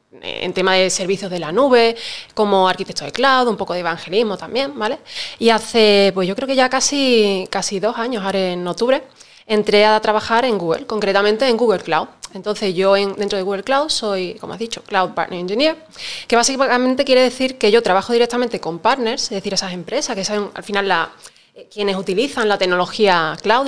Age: 20-39